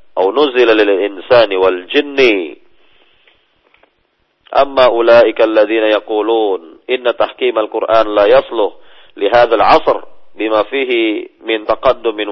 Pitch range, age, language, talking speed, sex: 115-170 Hz, 40-59, Indonesian, 75 wpm, male